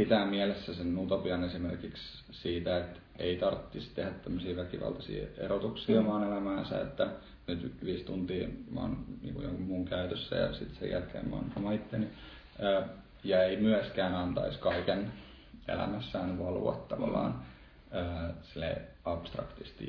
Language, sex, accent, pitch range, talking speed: English, male, Finnish, 75-100 Hz, 115 wpm